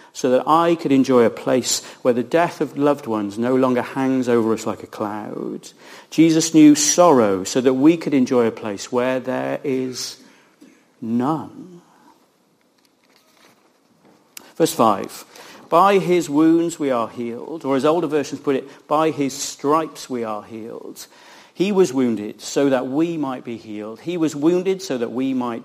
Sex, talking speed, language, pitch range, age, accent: male, 165 wpm, English, 125-155 Hz, 50-69, British